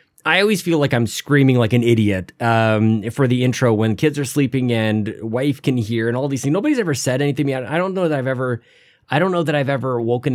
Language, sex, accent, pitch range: English, male, American, 115-160 Hz